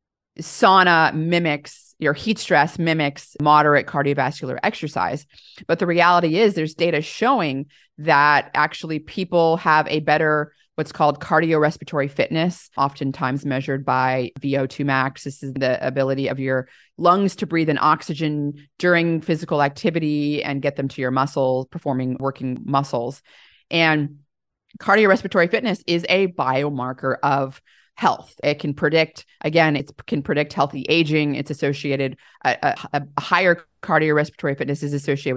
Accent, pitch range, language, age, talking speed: American, 140-160 Hz, English, 30-49, 135 wpm